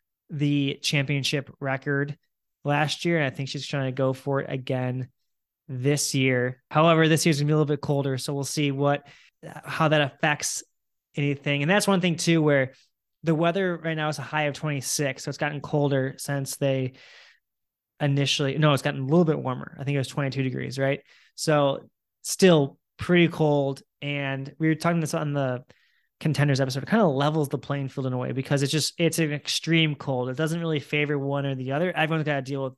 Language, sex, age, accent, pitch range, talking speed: English, male, 20-39, American, 135-160 Hz, 205 wpm